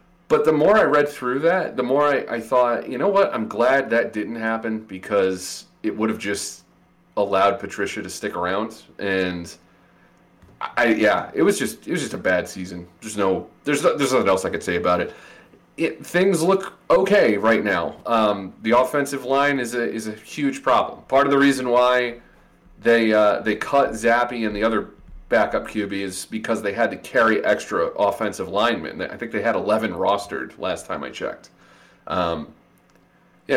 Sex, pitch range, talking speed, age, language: male, 100-130 Hz, 190 wpm, 30-49, English